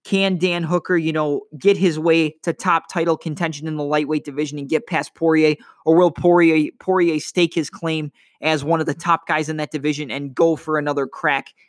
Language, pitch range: English, 150-175 Hz